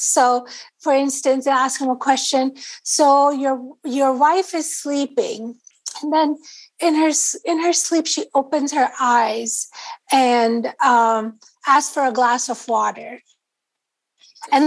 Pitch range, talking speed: 240-300 Hz, 140 wpm